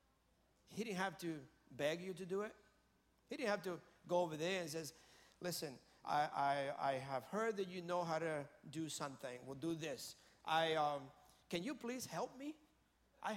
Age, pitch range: 50-69, 145-200 Hz